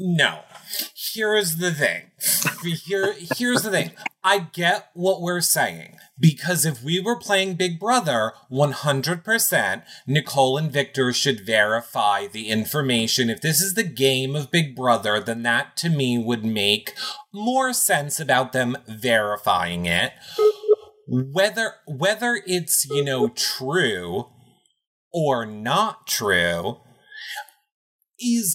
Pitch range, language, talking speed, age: 130-210 Hz, English, 120 wpm, 30-49